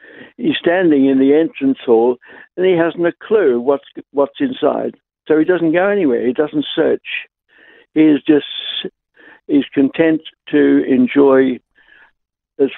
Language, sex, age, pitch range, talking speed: English, male, 60-79, 120-155 Hz, 145 wpm